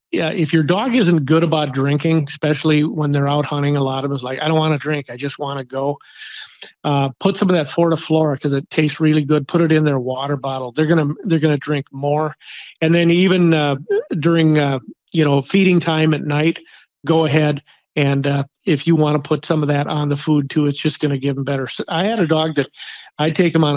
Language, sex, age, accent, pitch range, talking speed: English, male, 50-69, American, 140-160 Hz, 240 wpm